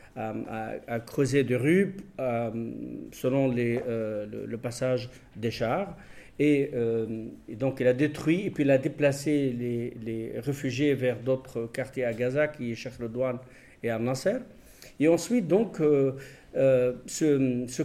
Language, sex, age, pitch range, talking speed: French, male, 50-69, 120-155 Hz, 160 wpm